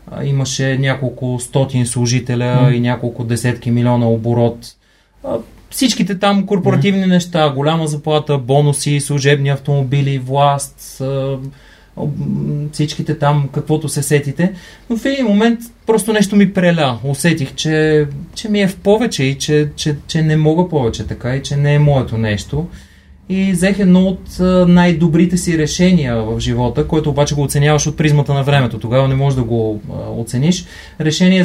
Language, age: Bulgarian, 30-49